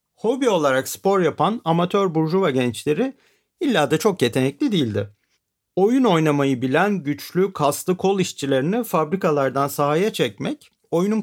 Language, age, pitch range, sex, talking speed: Turkish, 40-59, 130-180 Hz, male, 125 wpm